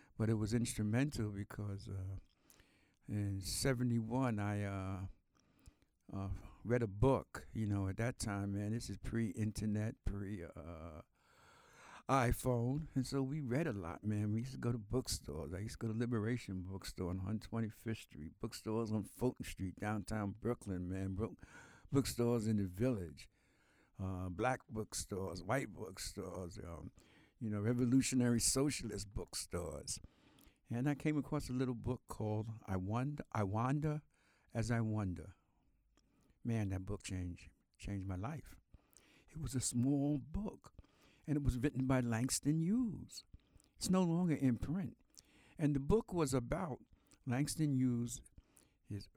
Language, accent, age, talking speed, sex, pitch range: English, American, 60-79, 140 wpm, male, 100-130 Hz